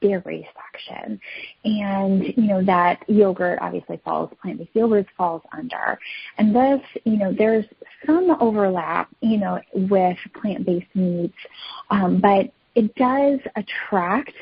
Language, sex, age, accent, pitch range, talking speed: English, female, 30-49, American, 175-220 Hz, 135 wpm